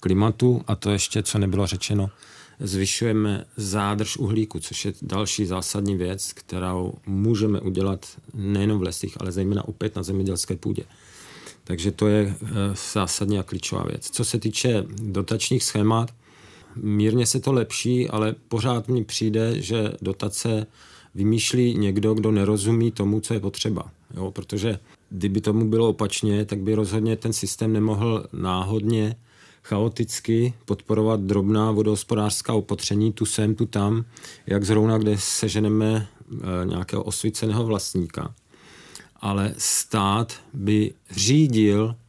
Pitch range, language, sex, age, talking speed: 100-115 Hz, Czech, male, 40-59, 130 wpm